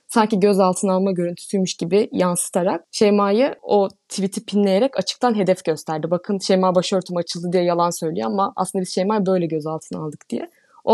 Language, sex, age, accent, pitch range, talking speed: Turkish, female, 20-39, native, 175-225 Hz, 160 wpm